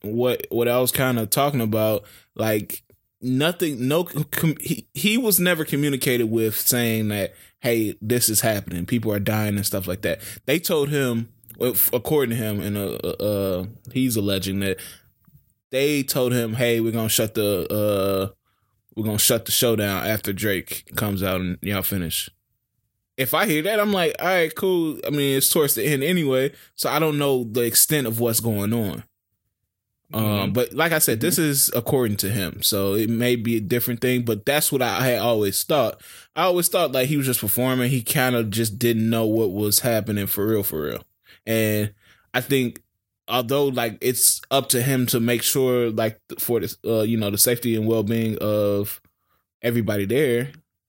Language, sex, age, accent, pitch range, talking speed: English, male, 20-39, American, 105-130 Hz, 190 wpm